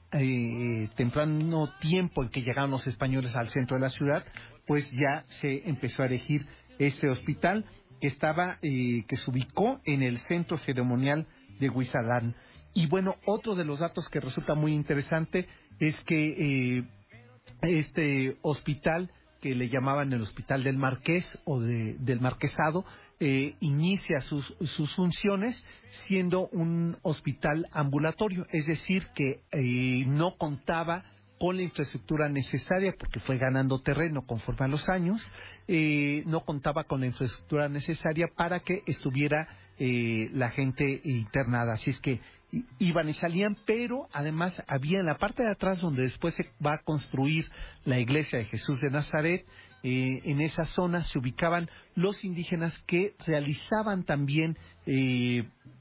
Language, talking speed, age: Spanish, 150 wpm, 40-59